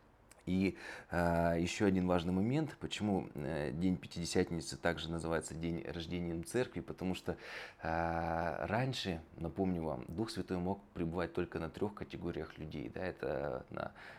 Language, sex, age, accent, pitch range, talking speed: Russian, male, 20-39, native, 80-90 Hz, 125 wpm